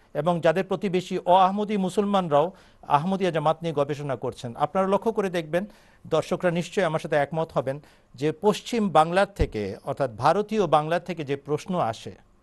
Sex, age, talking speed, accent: male, 50-69, 120 wpm, native